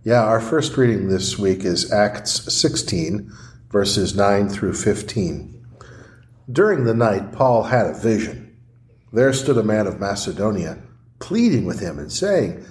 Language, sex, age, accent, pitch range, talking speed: English, male, 50-69, American, 110-130 Hz, 145 wpm